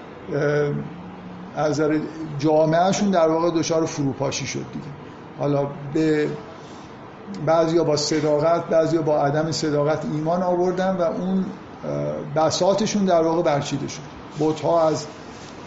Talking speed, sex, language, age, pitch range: 115 wpm, male, Persian, 50-69, 155-190 Hz